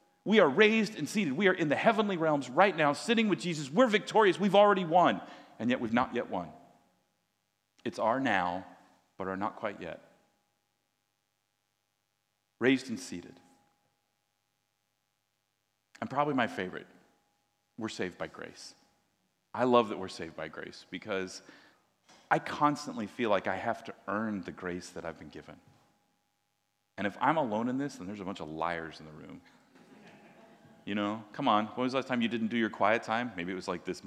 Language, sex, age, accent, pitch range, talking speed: English, male, 40-59, American, 95-135 Hz, 180 wpm